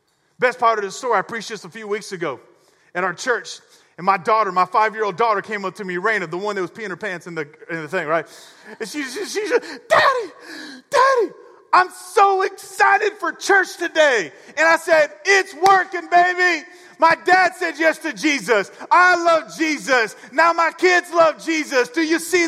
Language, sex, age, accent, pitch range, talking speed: English, male, 40-59, American, 250-330 Hz, 200 wpm